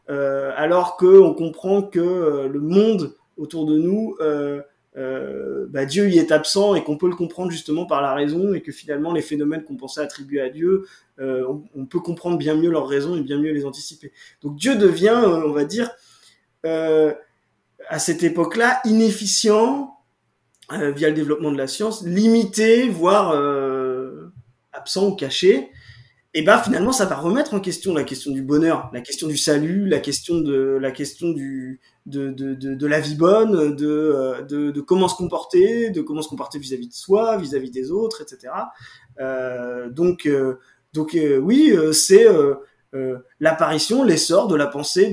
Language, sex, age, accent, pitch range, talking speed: French, male, 20-39, French, 140-190 Hz, 180 wpm